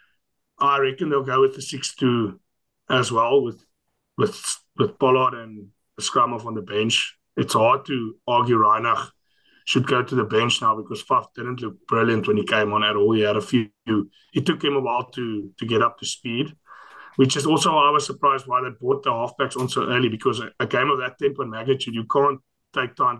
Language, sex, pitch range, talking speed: English, male, 115-145 Hz, 210 wpm